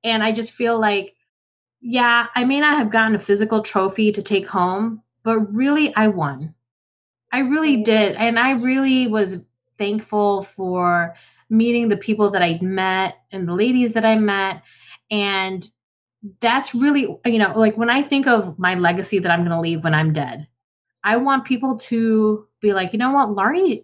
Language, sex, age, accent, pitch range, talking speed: English, female, 20-39, American, 190-240 Hz, 180 wpm